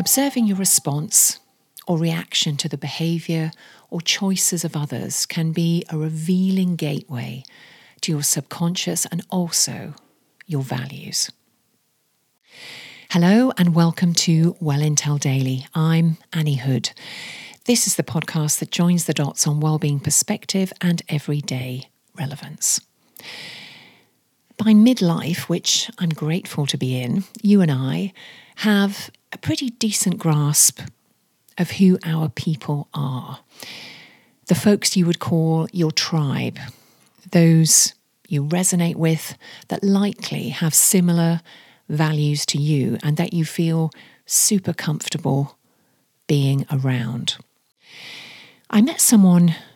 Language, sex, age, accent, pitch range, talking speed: English, female, 40-59, British, 150-185 Hz, 120 wpm